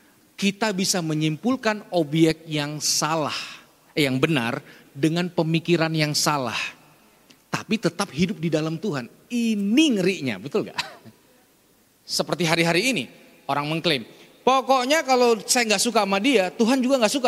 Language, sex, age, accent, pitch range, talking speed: Indonesian, male, 30-49, native, 155-250 Hz, 135 wpm